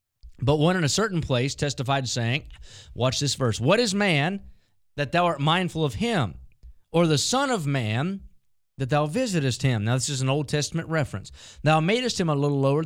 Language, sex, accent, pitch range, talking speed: English, male, American, 130-170 Hz, 195 wpm